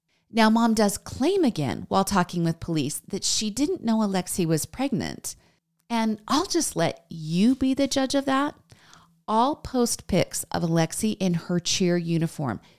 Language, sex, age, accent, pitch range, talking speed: English, female, 40-59, American, 155-215 Hz, 165 wpm